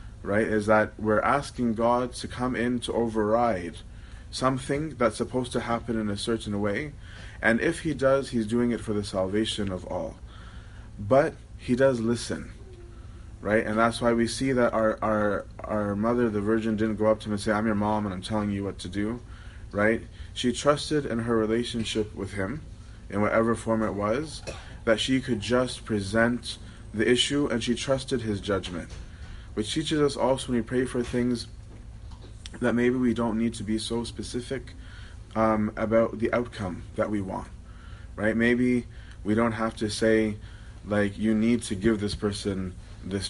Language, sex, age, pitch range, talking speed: English, male, 20-39, 100-115 Hz, 180 wpm